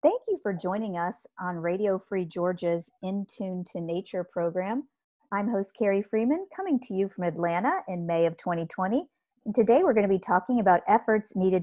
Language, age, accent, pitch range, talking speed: English, 40-59, American, 170-210 Hz, 185 wpm